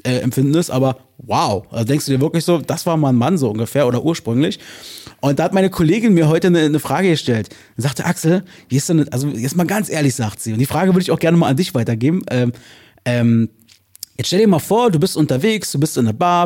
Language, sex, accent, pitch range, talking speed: German, male, German, 125-170 Hz, 250 wpm